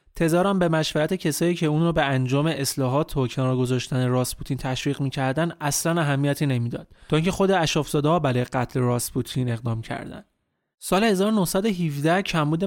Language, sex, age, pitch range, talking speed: Persian, male, 30-49, 135-170 Hz, 135 wpm